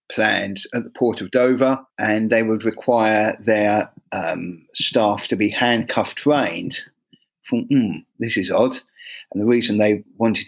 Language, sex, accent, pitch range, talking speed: English, male, British, 110-140 Hz, 150 wpm